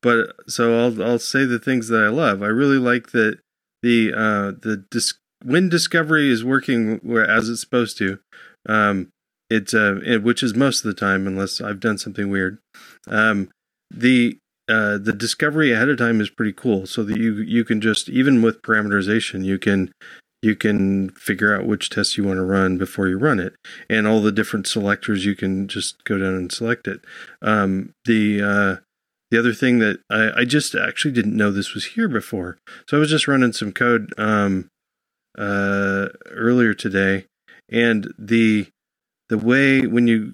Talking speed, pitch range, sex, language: 185 wpm, 100-120 Hz, male, English